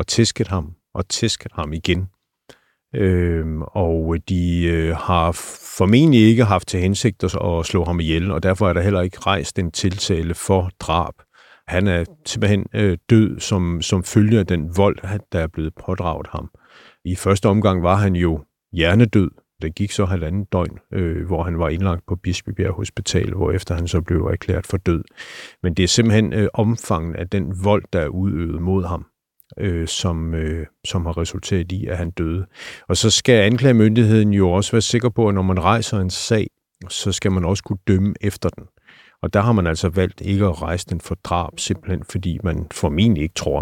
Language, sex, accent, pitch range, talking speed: Danish, male, native, 85-100 Hz, 195 wpm